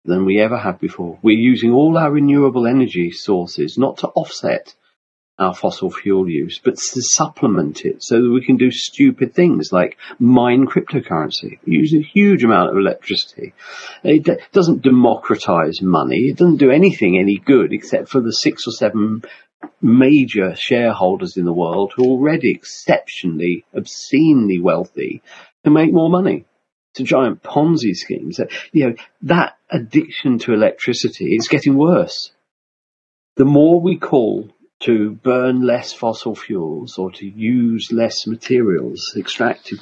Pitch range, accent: 100-150 Hz, British